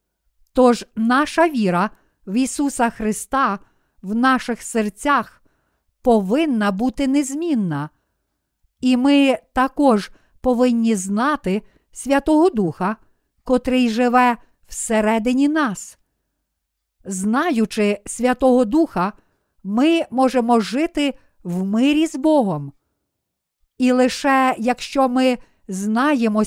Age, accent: 50-69, native